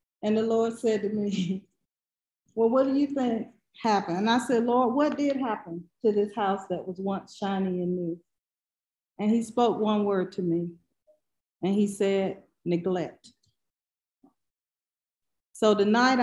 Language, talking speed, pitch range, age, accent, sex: English, 150 wpm, 185-230 Hz, 40-59, American, female